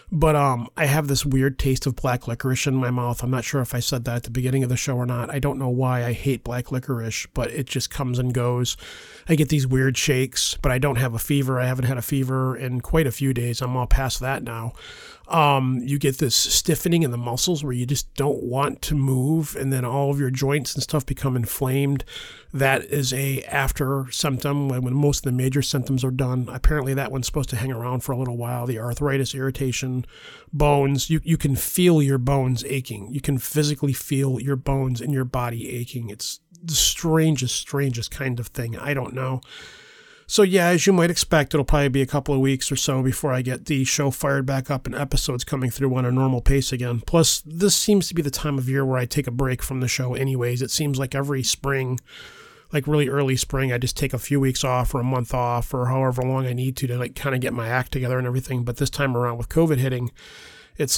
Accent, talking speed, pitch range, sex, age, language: American, 240 wpm, 125-145 Hz, male, 30-49, English